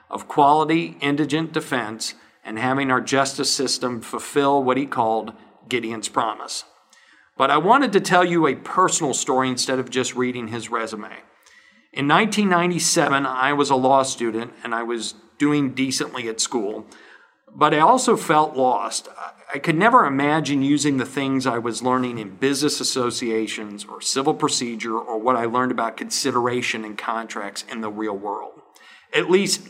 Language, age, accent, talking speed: English, 40-59, American, 160 wpm